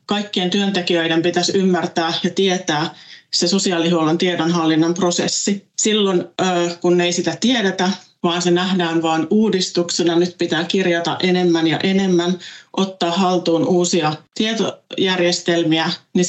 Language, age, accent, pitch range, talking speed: Finnish, 30-49, native, 165-185 Hz, 120 wpm